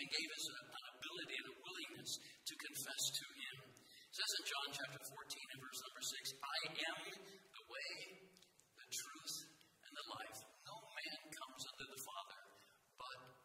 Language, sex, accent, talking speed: English, male, American, 175 wpm